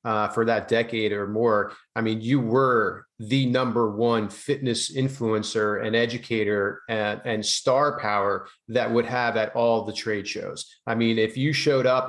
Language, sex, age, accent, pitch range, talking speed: English, male, 30-49, American, 115-145 Hz, 175 wpm